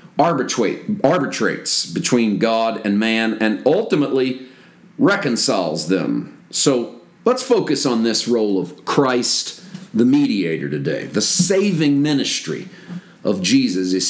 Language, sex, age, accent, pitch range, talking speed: English, male, 40-59, American, 120-160 Hz, 110 wpm